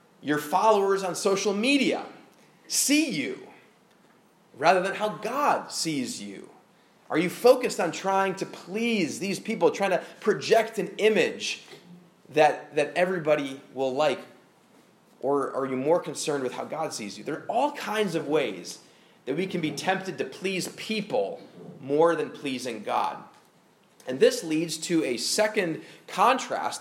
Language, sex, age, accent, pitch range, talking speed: English, male, 30-49, American, 155-210 Hz, 150 wpm